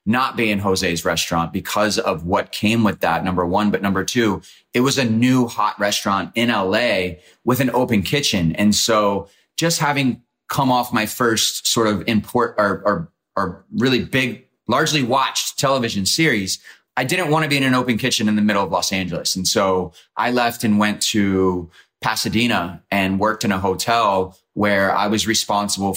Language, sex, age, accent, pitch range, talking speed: English, male, 30-49, American, 95-115 Hz, 185 wpm